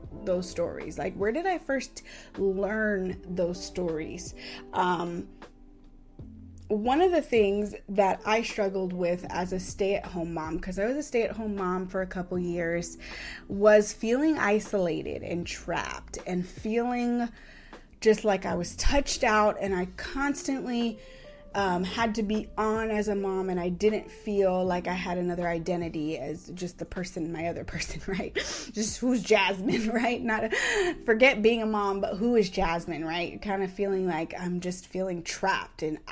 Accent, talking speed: American, 160 wpm